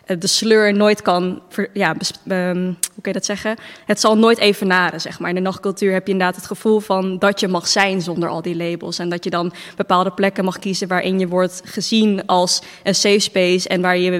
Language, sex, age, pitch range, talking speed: Dutch, female, 20-39, 180-195 Hz, 230 wpm